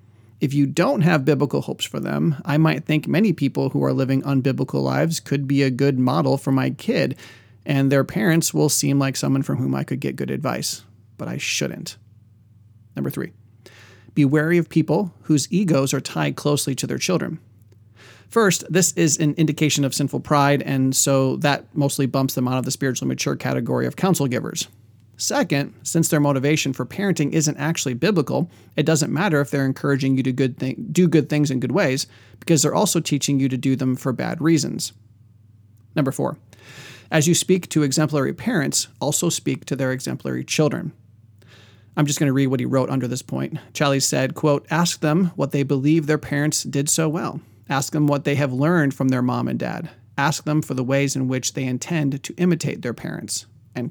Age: 30-49